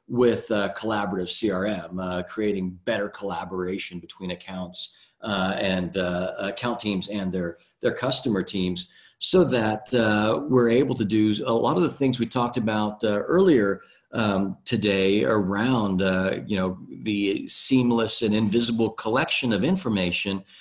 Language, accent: English, American